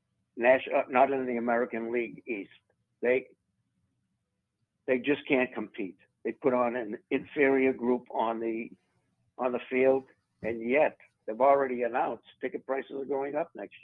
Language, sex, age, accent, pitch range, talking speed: English, male, 60-79, American, 115-140 Hz, 150 wpm